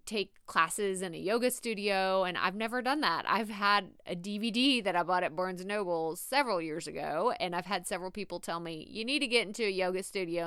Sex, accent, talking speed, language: female, American, 230 wpm, English